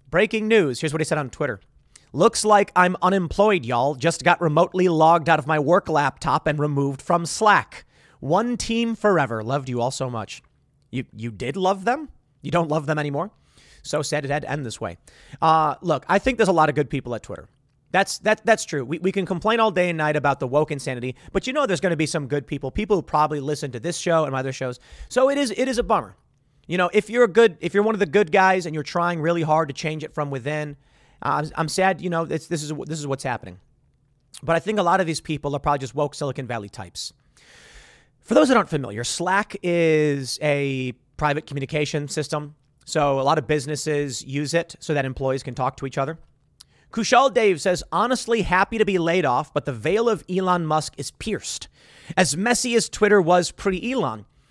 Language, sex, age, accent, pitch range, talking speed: English, male, 30-49, American, 140-185 Hz, 225 wpm